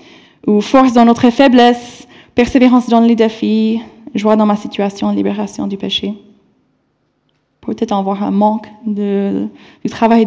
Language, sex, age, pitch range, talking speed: French, female, 20-39, 215-275 Hz, 135 wpm